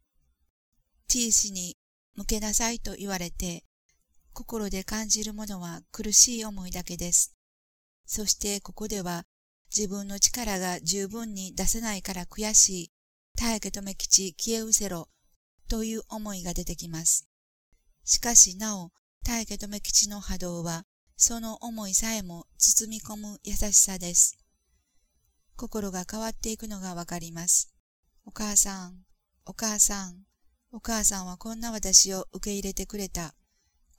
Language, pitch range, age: Japanese, 175-215 Hz, 40-59